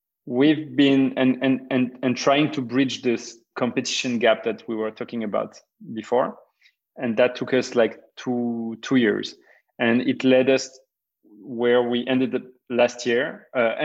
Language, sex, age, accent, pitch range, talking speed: English, male, 30-49, French, 115-135 Hz, 160 wpm